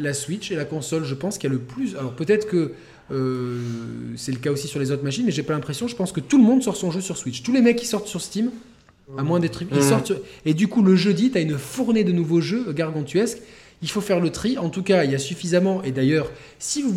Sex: male